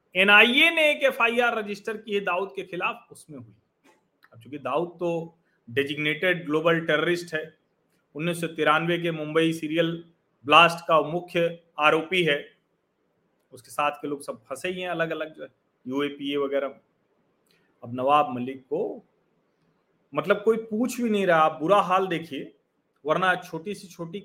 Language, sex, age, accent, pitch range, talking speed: Hindi, male, 40-59, native, 130-185 Hz, 130 wpm